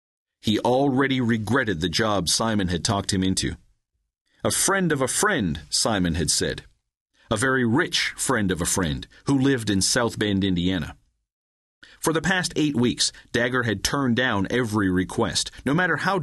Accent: American